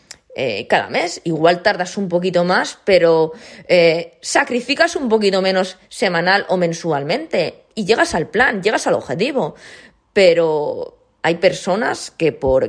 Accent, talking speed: Spanish, 135 wpm